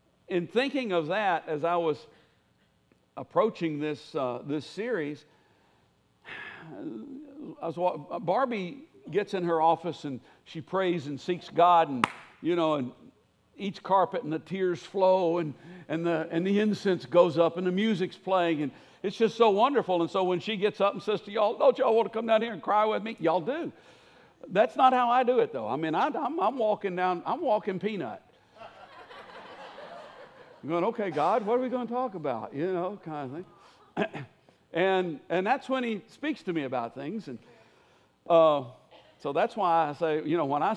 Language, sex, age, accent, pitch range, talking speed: English, male, 60-79, American, 170-225 Hz, 190 wpm